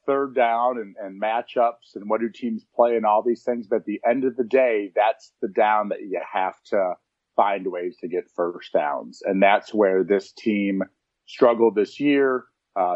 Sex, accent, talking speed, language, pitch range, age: male, American, 200 wpm, English, 105-125 Hz, 40-59